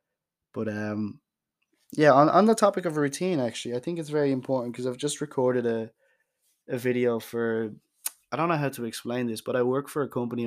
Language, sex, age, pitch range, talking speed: English, male, 20-39, 110-120 Hz, 210 wpm